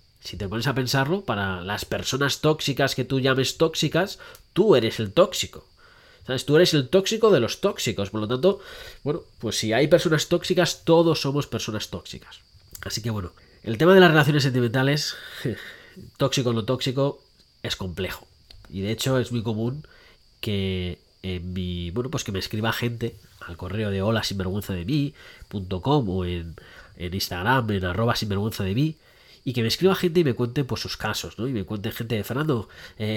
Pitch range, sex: 105-155 Hz, male